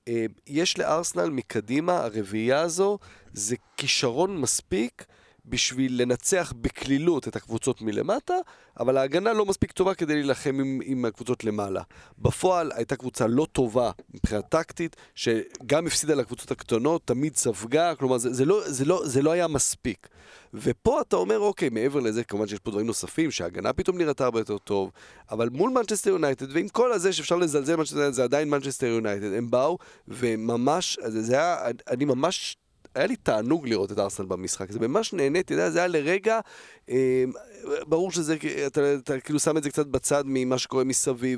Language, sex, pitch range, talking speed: Hebrew, male, 115-165 Hz, 165 wpm